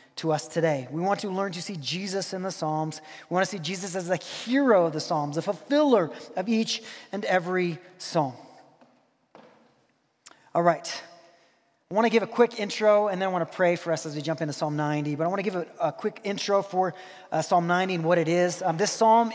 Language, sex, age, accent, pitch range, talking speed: English, male, 20-39, American, 175-235 Hz, 230 wpm